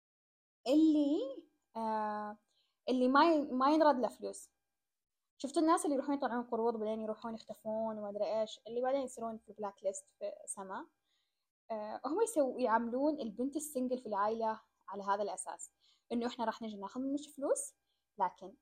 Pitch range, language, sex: 225-305 Hz, Arabic, female